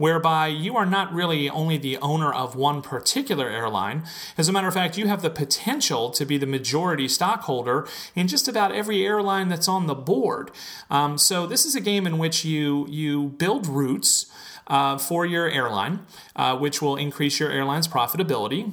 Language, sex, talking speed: English, male, 185 wpm